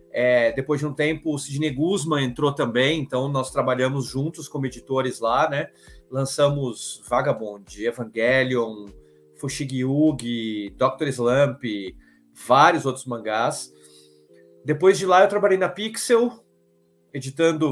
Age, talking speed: 30-49, 120 wpm